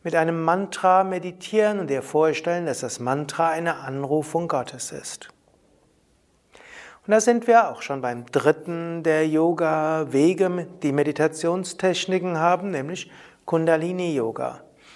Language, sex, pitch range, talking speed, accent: German, male, 140-180 Hz, 115 wpm, German